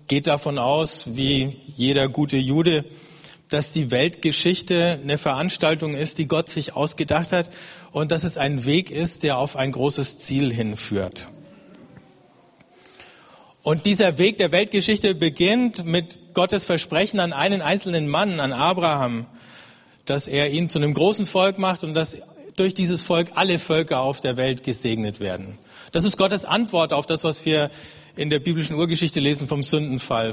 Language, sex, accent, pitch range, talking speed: German, male, German, 130-175 Hz, 160 wpm